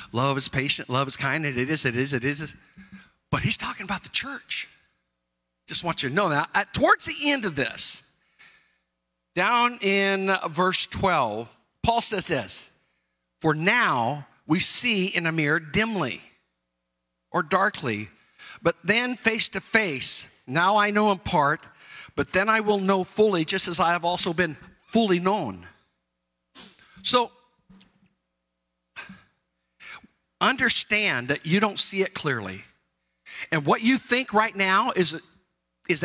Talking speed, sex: 150 wpm, male